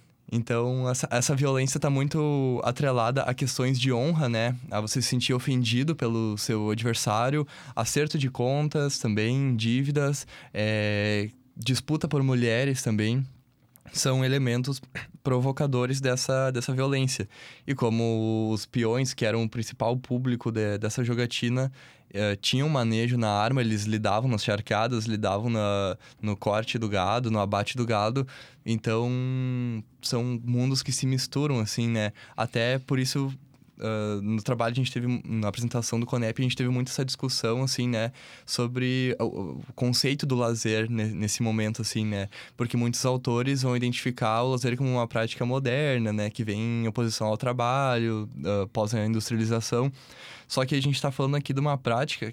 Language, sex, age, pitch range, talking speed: Portuguese, male, 10-29, 115-135 Hz, 155 wpm